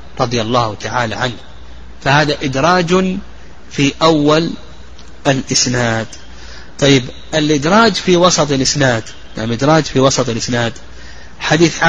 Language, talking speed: Arabic, 95 wpm